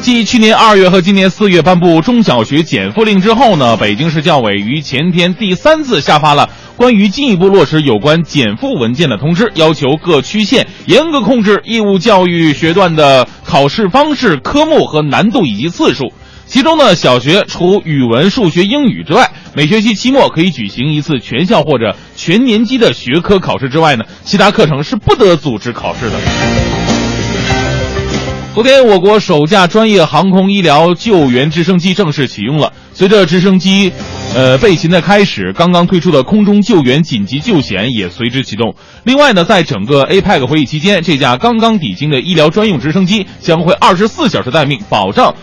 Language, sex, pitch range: Chinese, male, 145-210 Hz